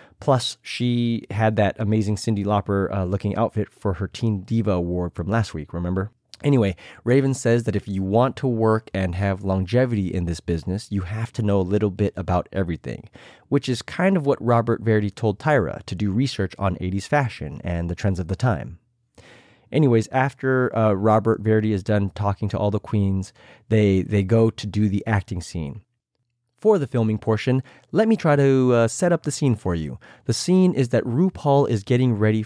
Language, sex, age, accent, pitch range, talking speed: English, male, 30-49, American, 100-130 Hz, 195 wpm